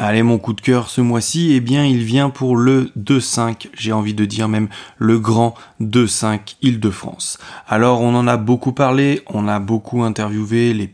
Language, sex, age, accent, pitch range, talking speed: French, male, 20-39, French, 110-130 Hz, 190 wpm